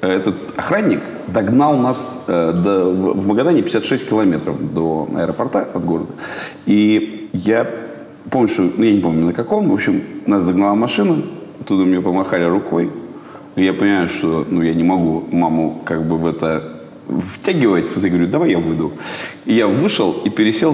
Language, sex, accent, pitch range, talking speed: Russian, male, native, 85-130 Hz, 165 wpm